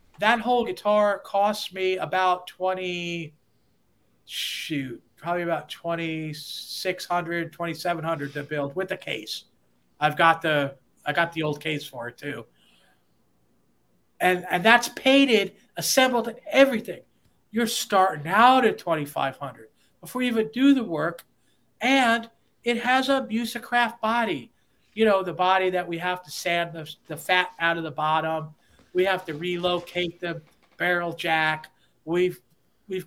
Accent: American